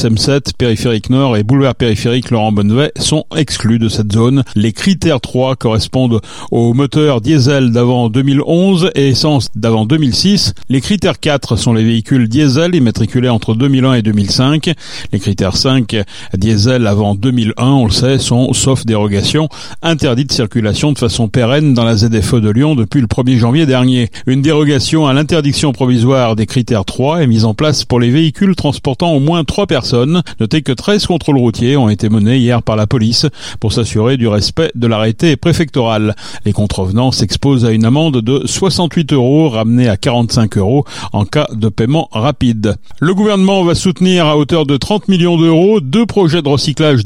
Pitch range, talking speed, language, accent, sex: 115-150 Hz, 175 wpm, French, French, male